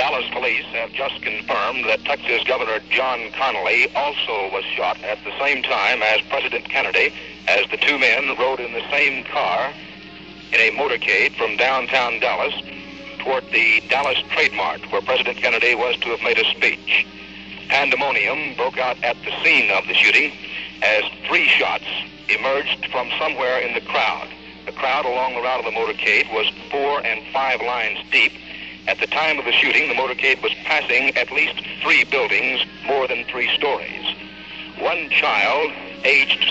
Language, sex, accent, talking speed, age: English, male, American, 165 wpm, 60-79